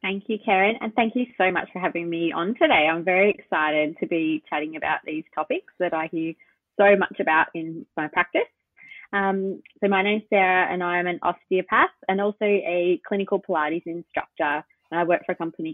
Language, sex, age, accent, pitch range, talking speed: English, female, 20-39, Australian, 160-200 Hz, 200 wpm